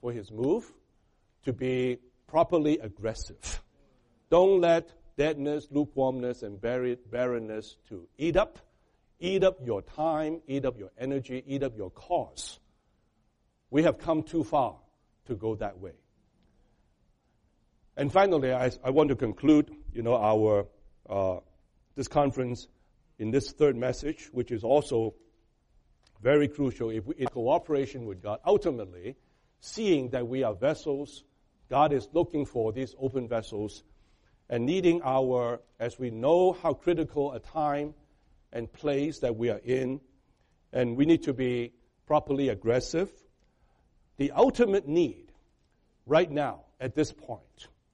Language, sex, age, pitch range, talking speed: English, male, 60-79, 115-150 Hz, 135 wpm